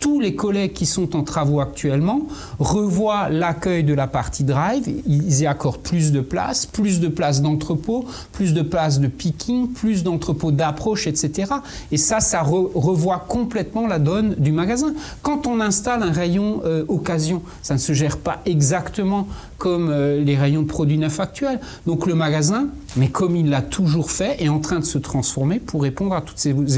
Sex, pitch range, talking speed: male, 145-195 Hz, 190 wpm